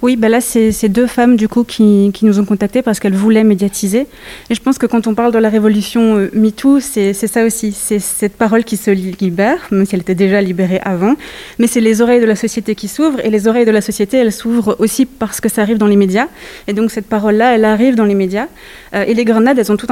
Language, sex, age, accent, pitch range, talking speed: French, female, 20-39, French, 205-235 Hz, 270 wpm